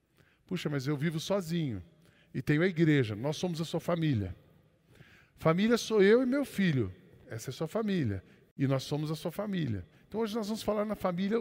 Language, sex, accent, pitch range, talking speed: Portuguese, male, Brazilian, 160-210 Hz, 200 wpm